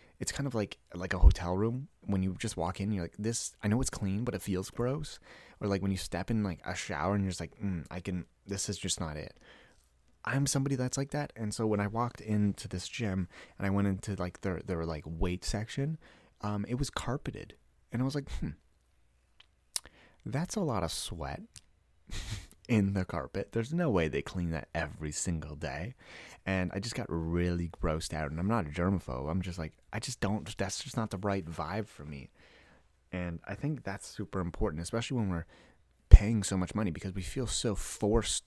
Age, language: 30-49, English